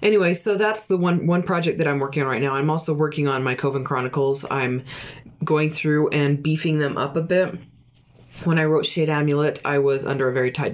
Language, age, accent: English, 20-39, American